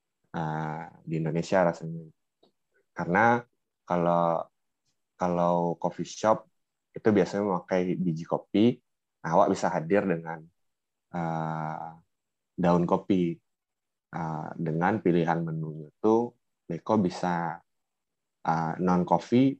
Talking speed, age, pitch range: 100 wpm, 20-39, 80-95 Hz